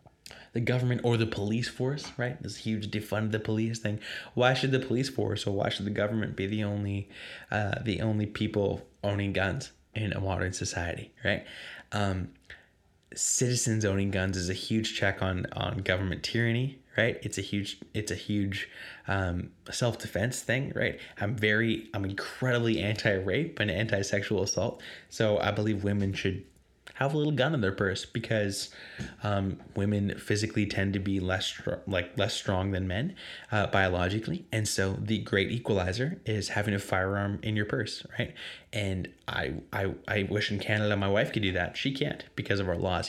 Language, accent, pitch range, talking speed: English, American, 95-110 Hz, 175 wpm